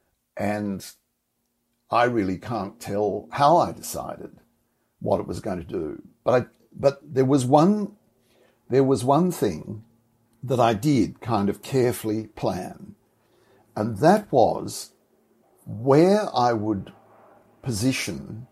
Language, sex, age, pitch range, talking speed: English, male, 60-79, 100-135 Hz, 125 wpm